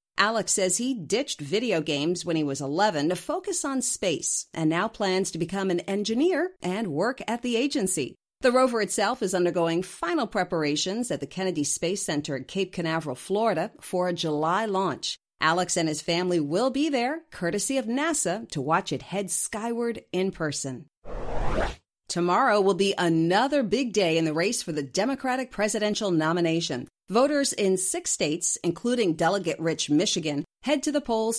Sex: female